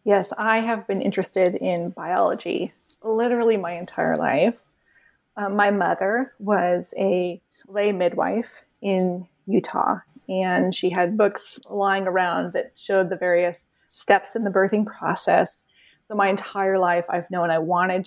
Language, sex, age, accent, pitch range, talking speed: English, female, 30-49, American, 185-235 Hz, 145 wpm